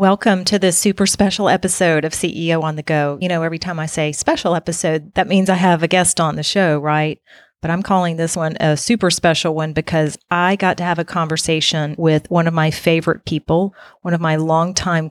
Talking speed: 220 wpm